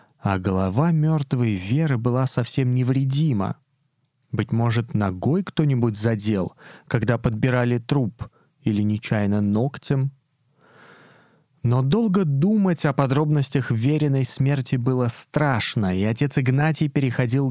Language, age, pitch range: Russian, 20-39, 120-145 Hz